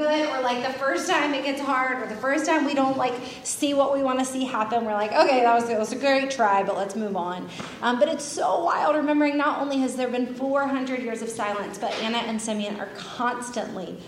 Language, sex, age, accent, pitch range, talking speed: English, female, 30-49, American, 210-270 Hz, 240 wpm